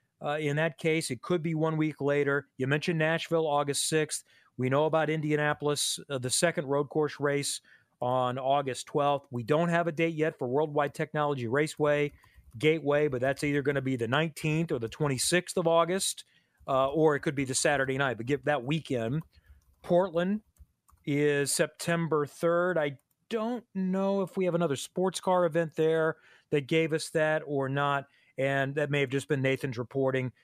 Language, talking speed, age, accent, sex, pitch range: English, 185 wpm, 40-59, American, male, 130-160 Hz